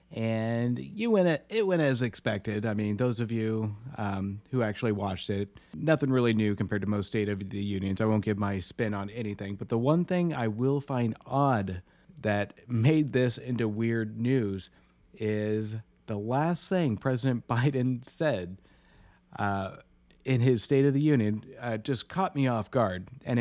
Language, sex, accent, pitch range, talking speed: English, male, American, 105-135 Hz, 180 wpm